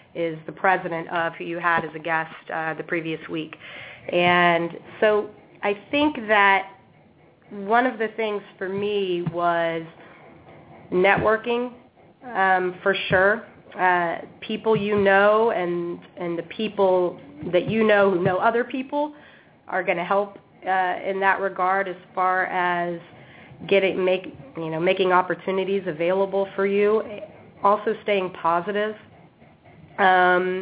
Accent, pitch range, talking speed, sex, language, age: American, 175-205 Hz, 135 wpm, female, English, 30-49